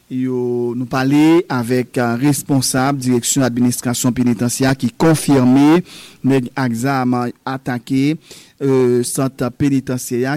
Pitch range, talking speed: 125-150 Hz, 95 wpm